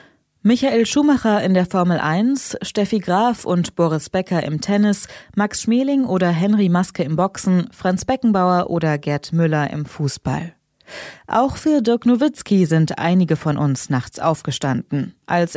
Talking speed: 145 wpm